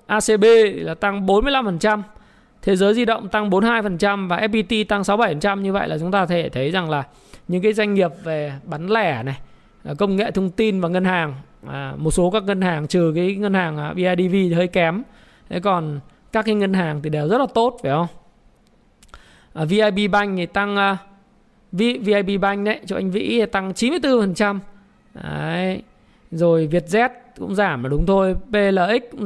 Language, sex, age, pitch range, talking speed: Vietnamese, male, 20-39, 175-215 Hz, 180 wpm